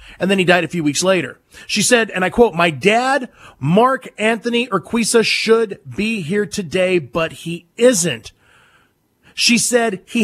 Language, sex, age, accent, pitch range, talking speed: English, male, 40-59, American, 160-235 Hz, 165 wpm